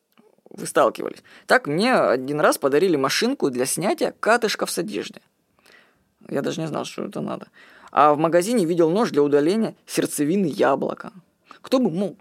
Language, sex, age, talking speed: Russian, female, 20-39, 155 wpm